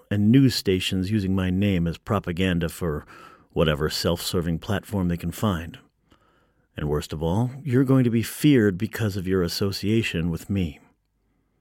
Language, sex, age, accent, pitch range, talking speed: English, male, 40-59, American, 90-115 Hz, 155 wpm